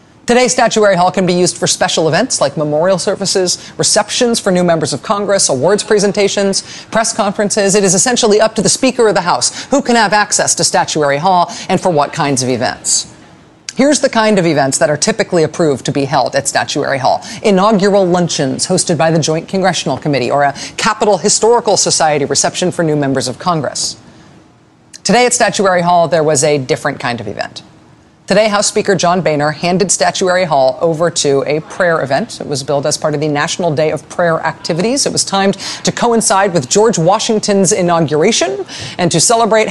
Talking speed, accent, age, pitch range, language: 190 wpm, American, 40-59, 160-205 Hz, English